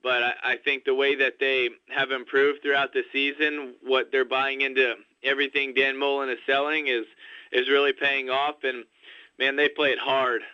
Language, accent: English, American